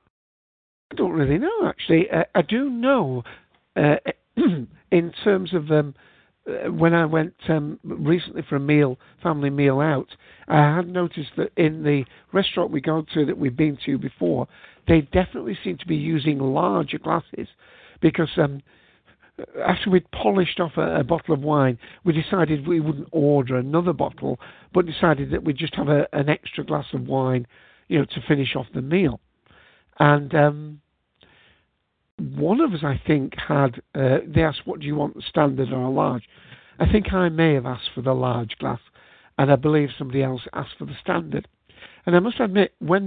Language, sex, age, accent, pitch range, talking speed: English, male, 60-79, British, 140-175 Hz, 175 wpm